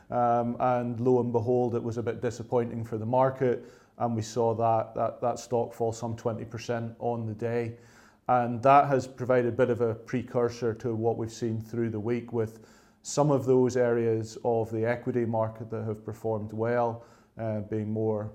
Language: English